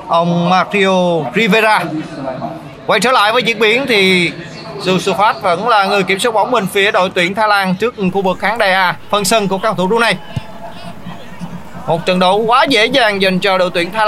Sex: male